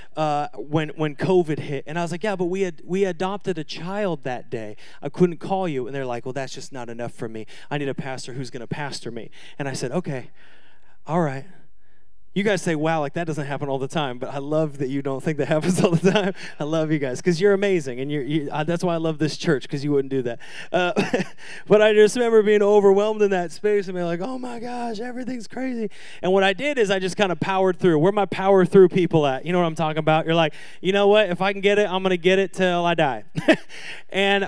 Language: English